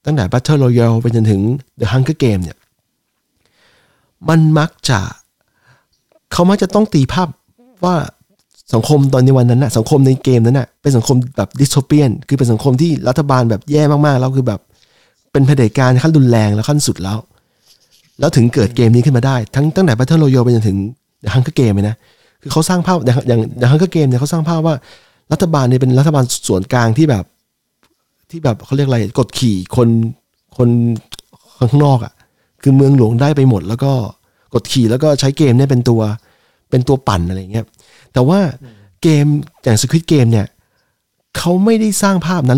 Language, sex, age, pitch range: Thai, male, 20-39, 120-155 Hz